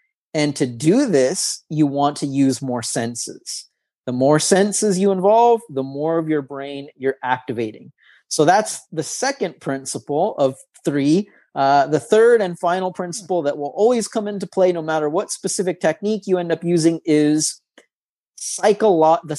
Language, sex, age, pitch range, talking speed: English, male, 30-49, 150-190 Hz, 160 wpm